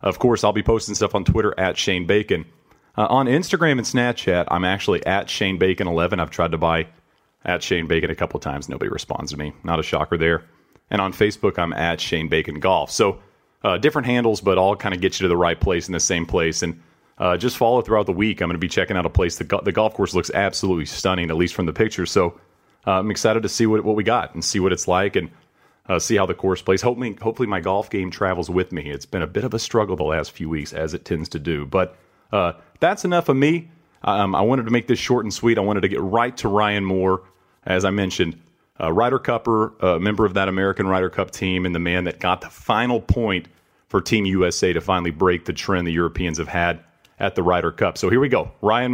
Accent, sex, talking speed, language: American, male, 255 wpm, English